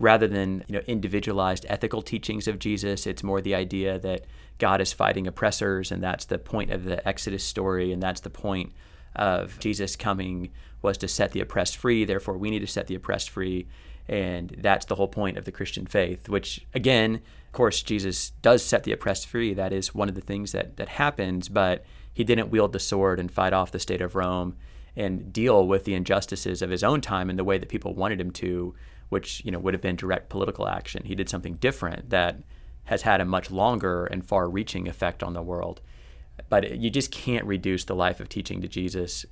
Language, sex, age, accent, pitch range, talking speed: English, male, 30-49, American, 90-105 Hz, 215 wpm